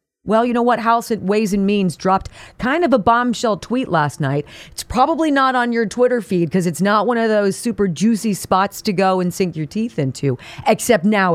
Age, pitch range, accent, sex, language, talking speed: 40-59, 155-250 Hz, American, female, English, 220 wpm